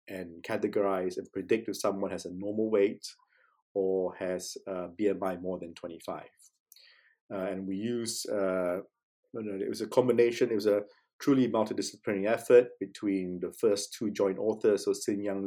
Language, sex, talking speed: English, male, 165 wpm